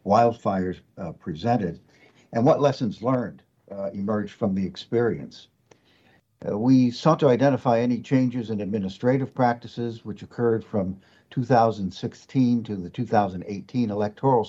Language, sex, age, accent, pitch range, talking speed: English, male, 60-79, American, 100-125 Hz, 125 wpm